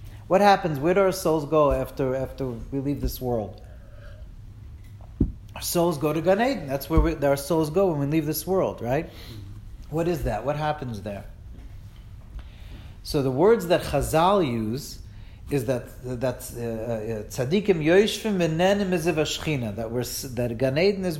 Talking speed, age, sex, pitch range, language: 145 wpm, 40-59, male, 110-160 Hz, English